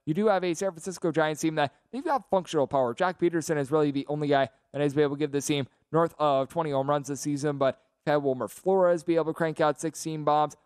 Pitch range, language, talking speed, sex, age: 140-160 Hz, English, 260 wpm, male, 20-39